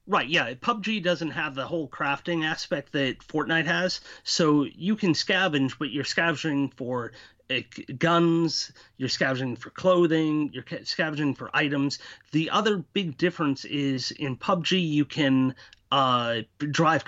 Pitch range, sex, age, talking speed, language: 140-175 Hz, male, 30-49, 150 wpm, English